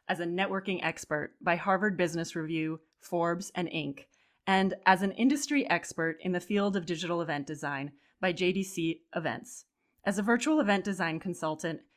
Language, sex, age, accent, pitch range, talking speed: English, female, 20-39, American, 160-210 Hz, 160 wpm